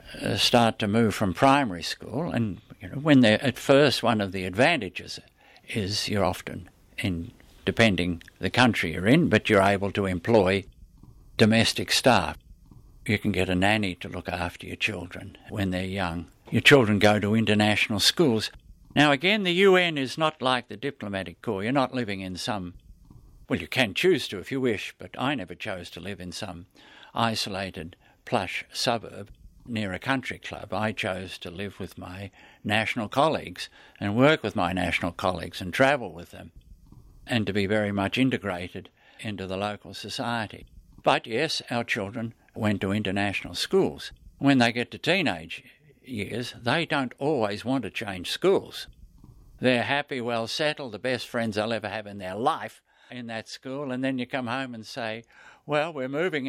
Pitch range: 95-125 Hz